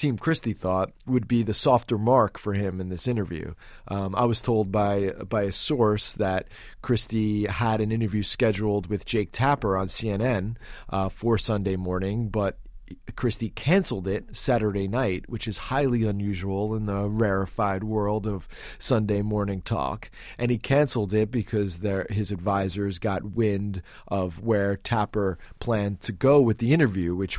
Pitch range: 100-125 Hz